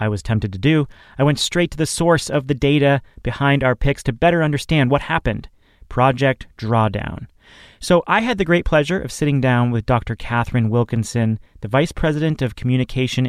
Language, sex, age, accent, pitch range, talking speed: English, male, 30-49, American, 115-150 Hz, 190 wpm